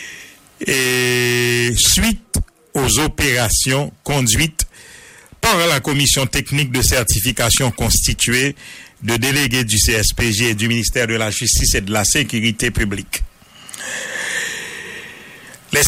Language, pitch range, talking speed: English, 110-135 Hz, 105 wpm